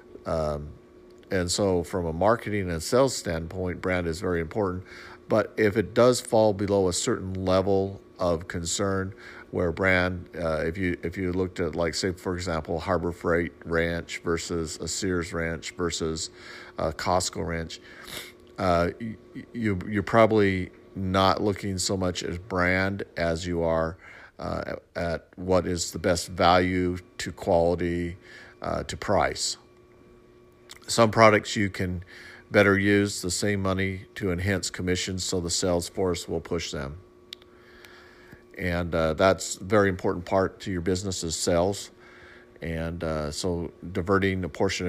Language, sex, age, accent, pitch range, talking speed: English, male, 50-69, American, 85-100 Hz, 145 wpm